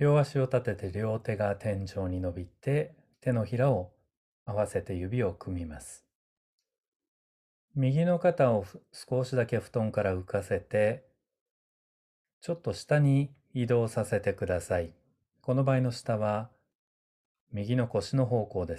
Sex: male